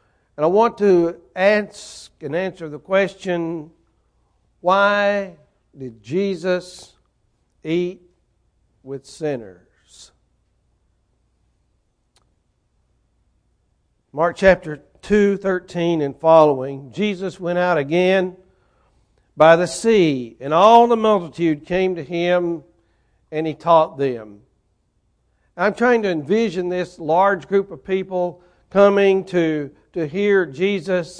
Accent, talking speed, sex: American, 100 wpm, male